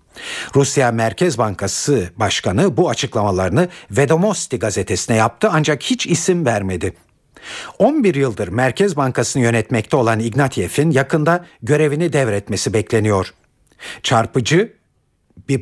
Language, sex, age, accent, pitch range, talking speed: Turkish, male, 60-79, native, 115-170 Hz, 100 wpm